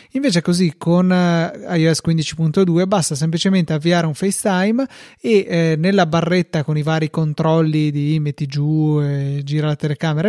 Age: 30-49